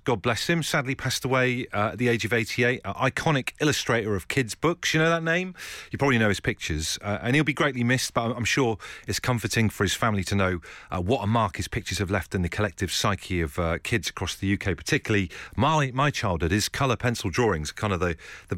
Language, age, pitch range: English, 40-59, 100-135 Hz